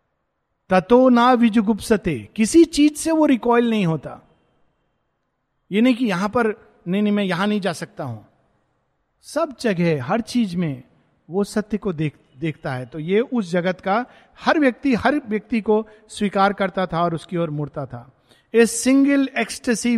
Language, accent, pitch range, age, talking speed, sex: Hindi, native, 165-235 Hz, 50-69, 165 wpm, male